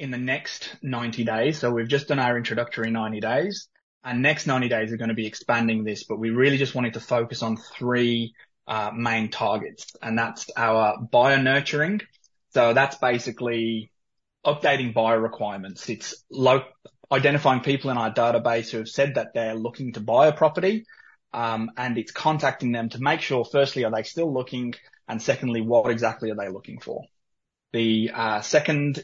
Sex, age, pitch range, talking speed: male, 20-39, 115-135 Hz, 180 wpm